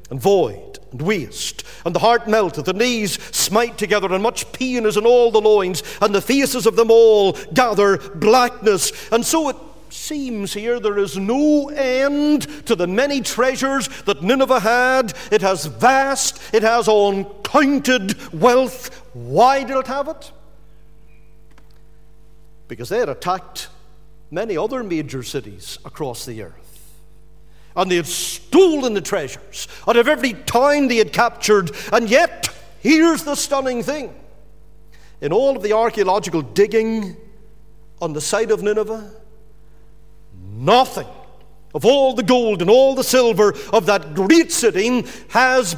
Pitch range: 195-260 Hz